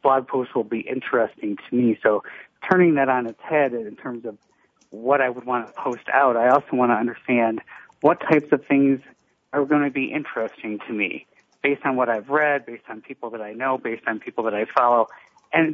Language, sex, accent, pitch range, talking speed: English, male, American, 115-135 Hz, 215 wpm